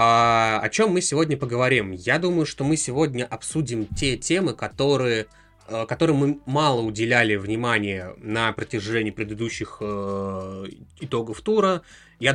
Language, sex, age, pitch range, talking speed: Russian, male, 20-39, 105-135 Hz, 120 wpm